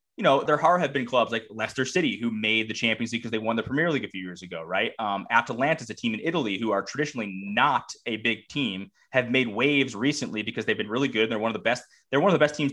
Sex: male